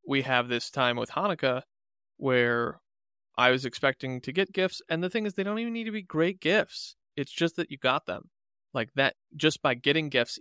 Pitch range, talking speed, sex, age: 125-150 Hz, 215 wpm, male, 20-39